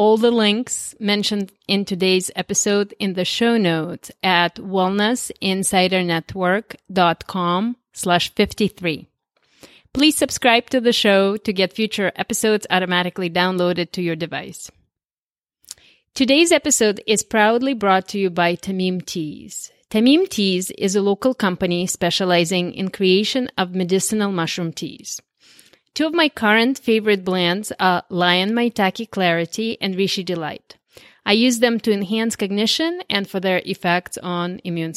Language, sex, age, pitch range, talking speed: English, female, 30-49, 180-230 Hz, 130 wpm